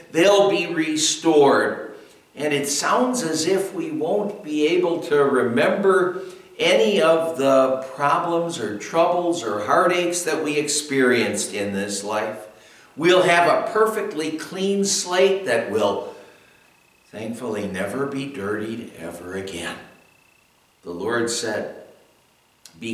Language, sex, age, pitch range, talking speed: English, male, 60-79, 105-165 Hz, 120 wpm